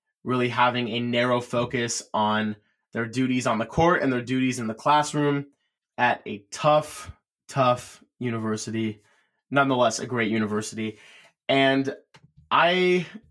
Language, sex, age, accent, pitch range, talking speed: English, male, 20-39, American, 125-155 Hz, 125 wpm